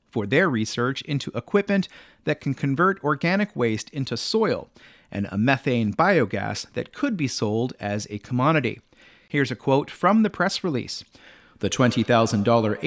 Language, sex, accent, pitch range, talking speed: English, male, American, 120-175 Hz, 150 wpm